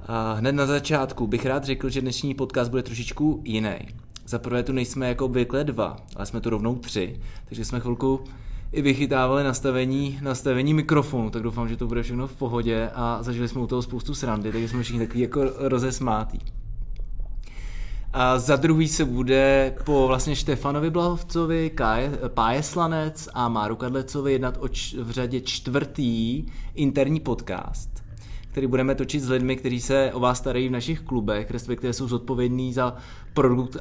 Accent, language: native, Czech